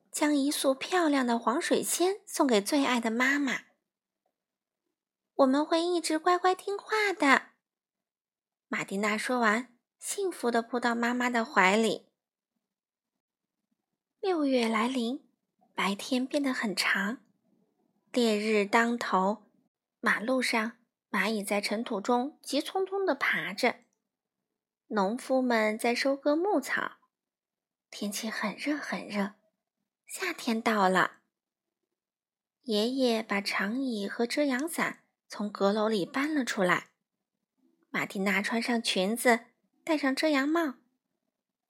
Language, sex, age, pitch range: Chinese, female, 20-39, 215-300 Hz